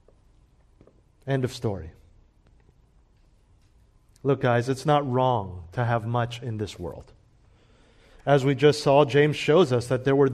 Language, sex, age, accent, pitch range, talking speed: English, male, 40-59, American, 120-160 Hz, 140 wpm